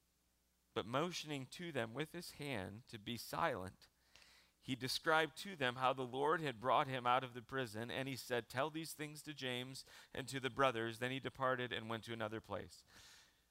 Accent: American